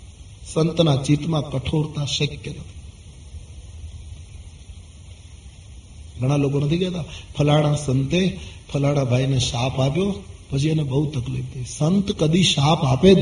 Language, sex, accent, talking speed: Gujarati, male, native, 100 wpm